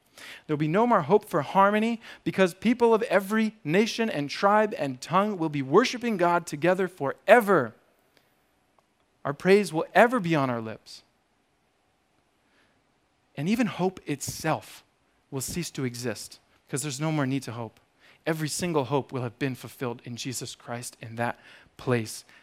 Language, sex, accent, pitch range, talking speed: English, male, American, 125-180 Hz, 160 wpm